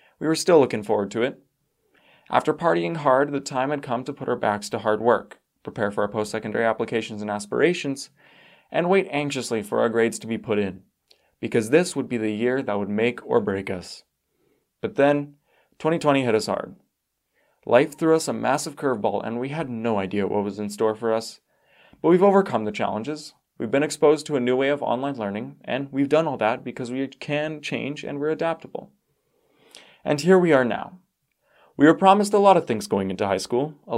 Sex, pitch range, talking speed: male, 115-155 Hz, 205 wpm